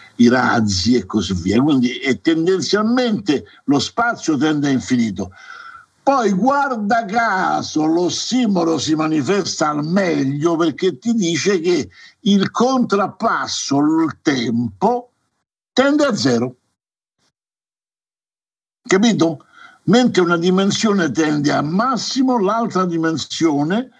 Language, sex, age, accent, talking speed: Italian, male, 60-79, native, 105 wpm